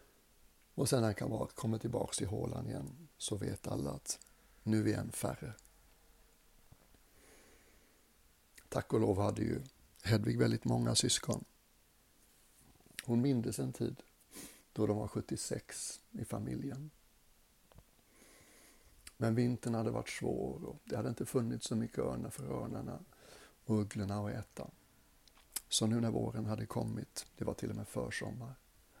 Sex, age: male, 60-79